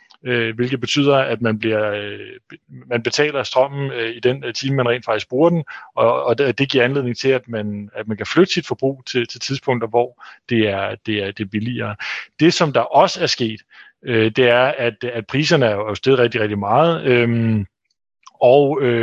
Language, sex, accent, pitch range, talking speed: Danish, male, native, 115-140 Hz, 165 wpm